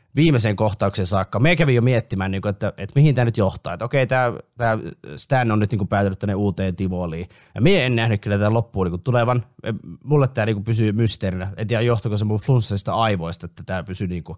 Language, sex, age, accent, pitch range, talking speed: Finnish, male, 20-39, native, 100-125 Hz, 190 wpm